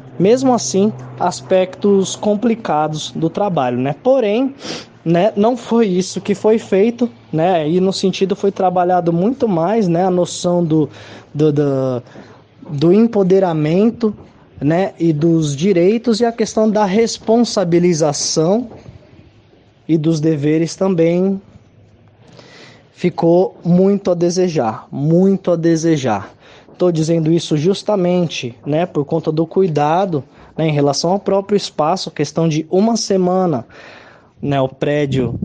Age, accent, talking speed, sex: 20-39, Brazilian, 120 wpm, male